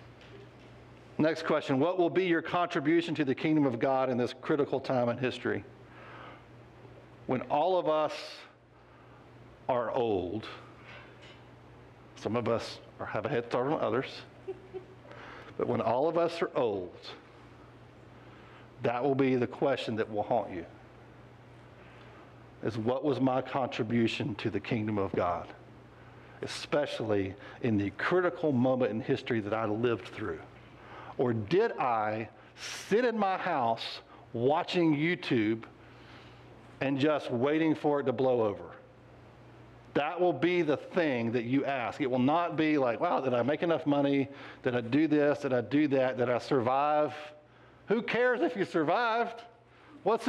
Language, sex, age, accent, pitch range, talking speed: English, male, 60-79, American, 125-175 Hz, 145 wpm